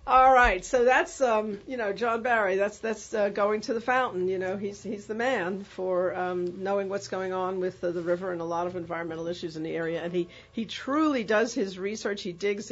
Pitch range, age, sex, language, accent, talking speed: 175-220 Hz, 50-69, female, English, American, 235 wpm